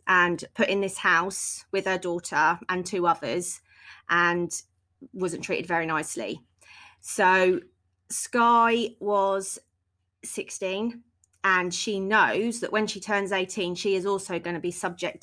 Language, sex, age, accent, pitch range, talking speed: English, female, 30-49, British, 175-200 Hz, 140 wpm